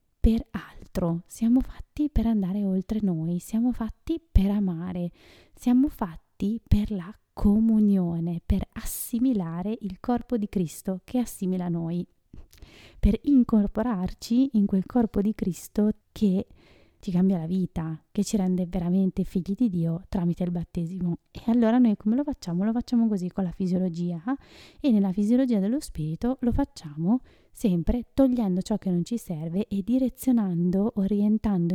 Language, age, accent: Italian, 20-39, native